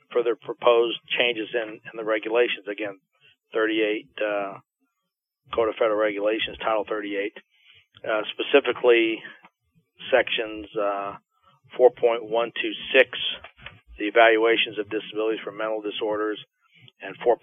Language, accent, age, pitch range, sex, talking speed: English, American, 40-59, 110-145 Hz, male, 105 wpm